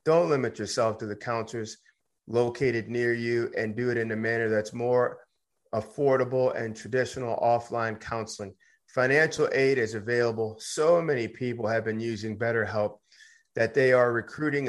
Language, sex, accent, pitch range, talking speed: English, male, American, 115-155 Hz, 150 wpm